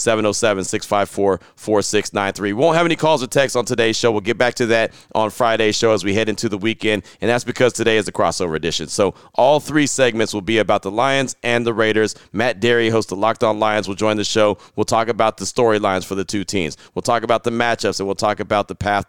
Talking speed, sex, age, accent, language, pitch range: 240 wpm, male, 30-49, American, English, 100-115 Hz